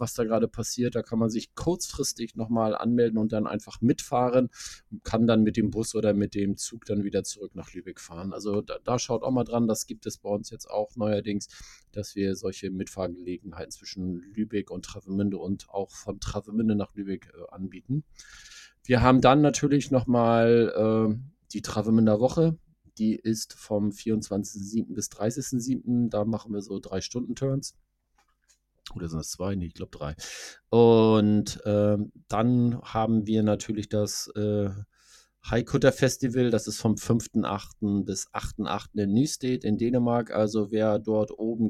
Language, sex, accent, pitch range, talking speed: German, male, German, 100-115 Hz, 165 wpm